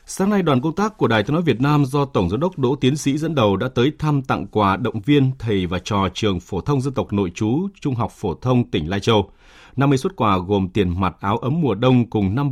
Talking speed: 270 wpm